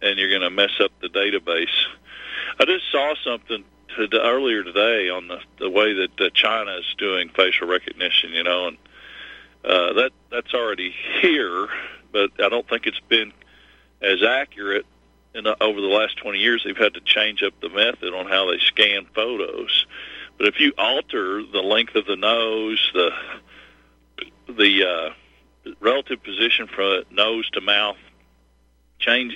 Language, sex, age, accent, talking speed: English, male, 40-59, American, 160 wpm